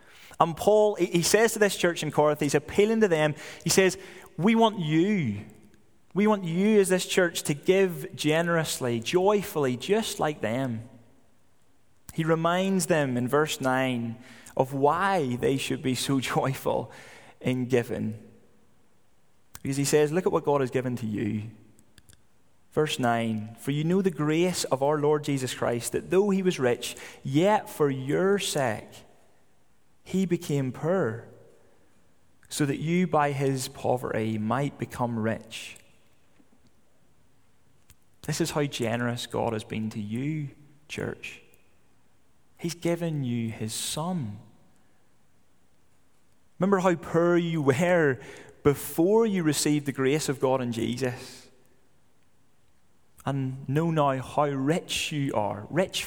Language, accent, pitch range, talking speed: English, British, 125-170 Hz, 135 wpm